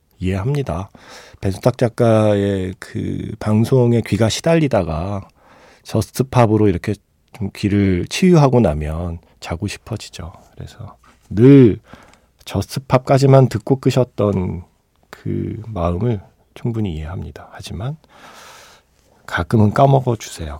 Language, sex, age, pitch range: Korean, male, 40-59, 95-130 Hz